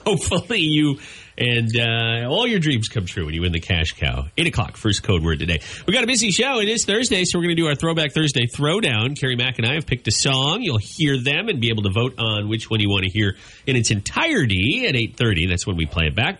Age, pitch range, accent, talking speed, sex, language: 30-49, 105-160 Hz, American, 265 wpm, male, English